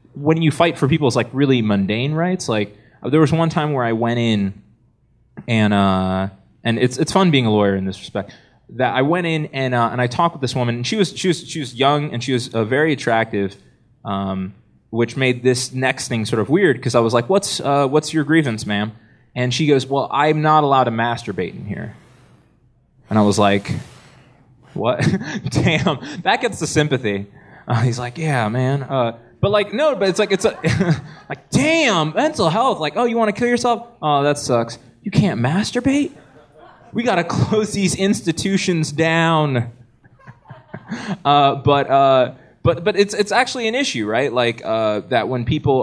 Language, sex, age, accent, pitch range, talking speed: English, male, 20-39, American, 115-160 Hz, 200 wpm